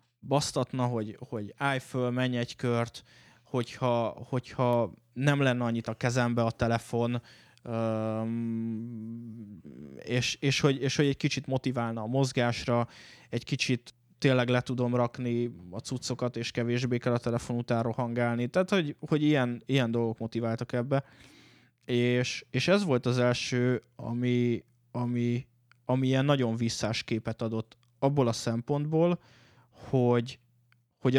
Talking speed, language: 130 wpm, Hungarian